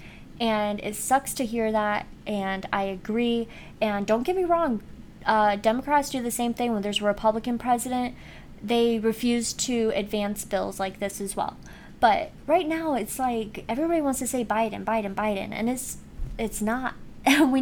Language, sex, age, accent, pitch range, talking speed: English, female, 20-39, American, 210-260 Hz, 175 wpm